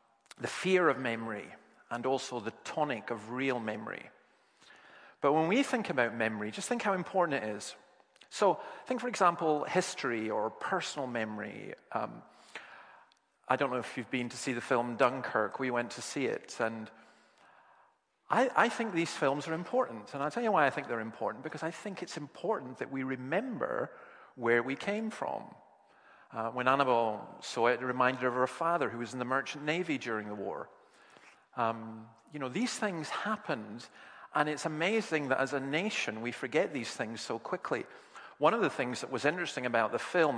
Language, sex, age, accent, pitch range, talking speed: English, male, 40-59, British, 115-160 Hz, 185 wpm